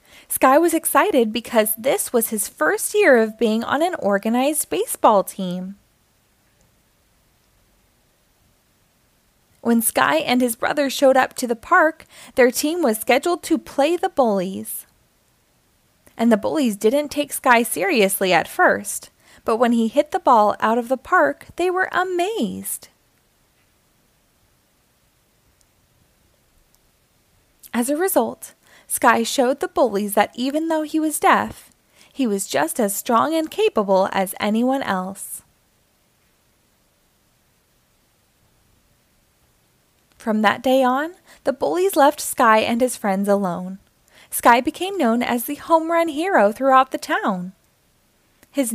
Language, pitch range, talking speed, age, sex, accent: English, 210-305 Hz, 125 wpm, 20-39, female, American